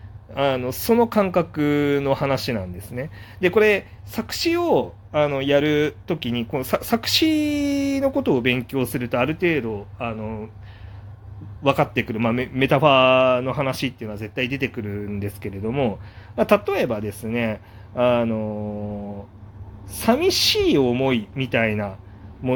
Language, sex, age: Japanese, male, 30-49